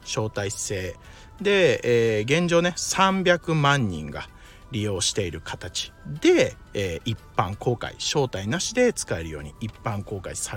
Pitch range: 105-155 Hz